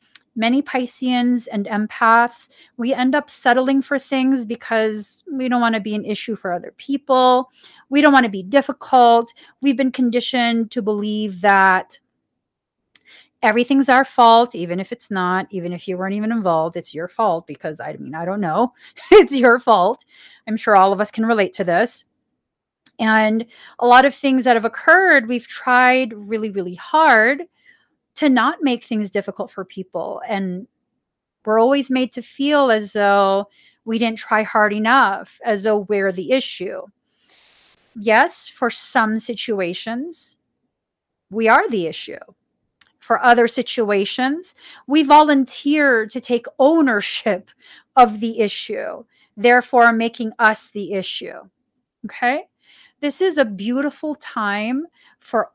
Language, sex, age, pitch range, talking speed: English, female, 30-49, 210-265 Hz, 145 wpm